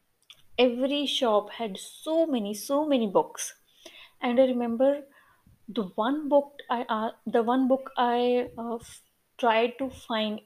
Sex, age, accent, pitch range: female, 20-39, Indian, 210-255 Hz